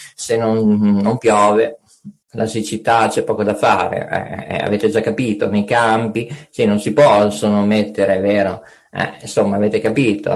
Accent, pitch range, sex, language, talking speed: native, 115-155 Hz, male, Italian, 160 wpm